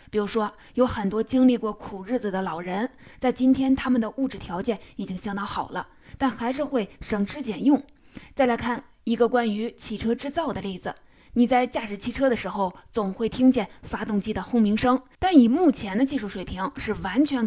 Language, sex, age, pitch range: Chinese, female, 20-39, 205-250 Hz